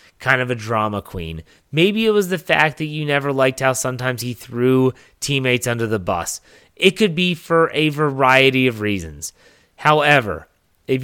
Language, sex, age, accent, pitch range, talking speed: English, male, 30-49, American, 115-150 Hz, 175 wpm